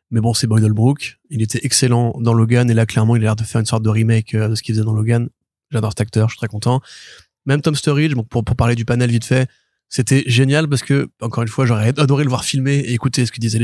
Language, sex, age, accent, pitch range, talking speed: French, male, 20-39, French, 120-145 Hz, 275 wpm